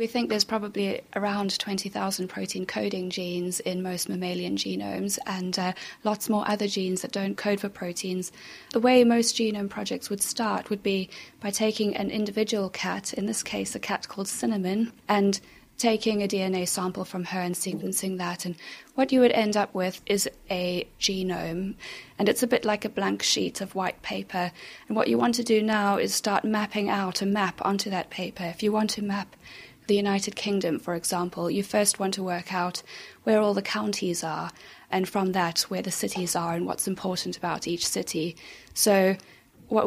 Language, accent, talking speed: English, British, 195 wpm